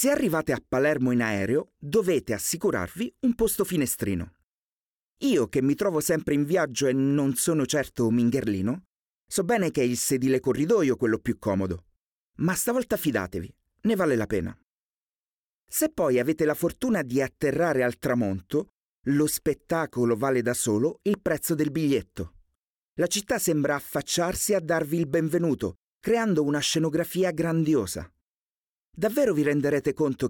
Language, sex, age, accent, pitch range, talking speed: Italian, male, 40-59, native, 120-170 Hz, 145 wpm